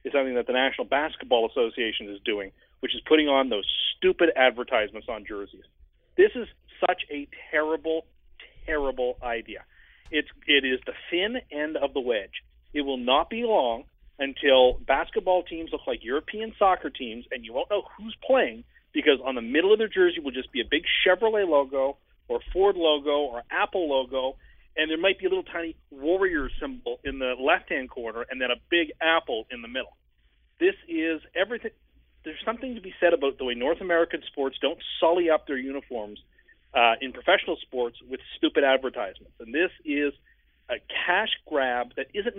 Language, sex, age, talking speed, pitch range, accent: English, male, 40-59, 180 wpm, 135-210 Hz, American